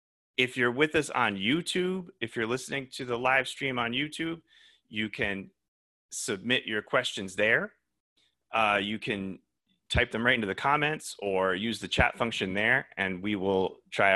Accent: American